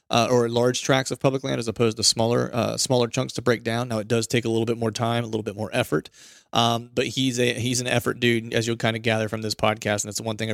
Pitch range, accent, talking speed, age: 110-120 Hz, American, 295 wpm, 30-49